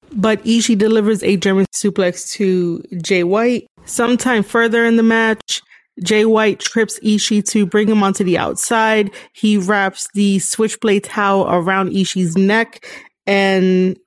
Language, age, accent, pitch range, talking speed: English, 20-39, American, 180-215 Hz, 140 wpm